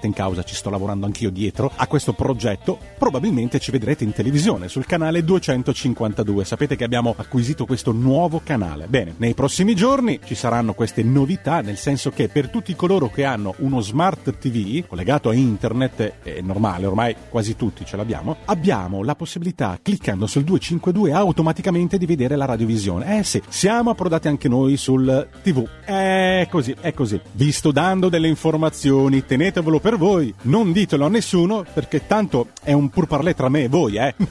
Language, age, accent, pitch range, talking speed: Italian, 30-49, native, 125-175 Hz, 175 wpm